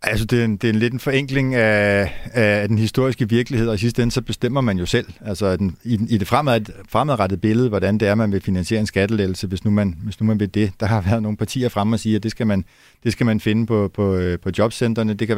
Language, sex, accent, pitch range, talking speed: Danish, male, native, 100-125 Hz, 260 wpm